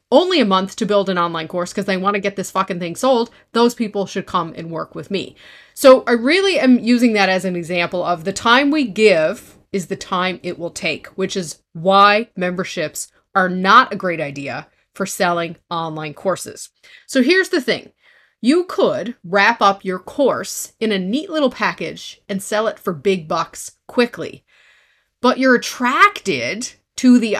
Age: 30-49